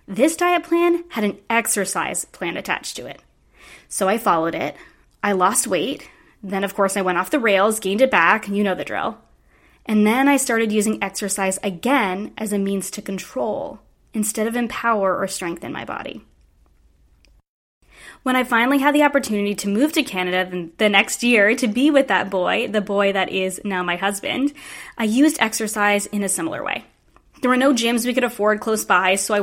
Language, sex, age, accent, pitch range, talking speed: English, female, 20-39, American, 195-255 Hz, 190 wpm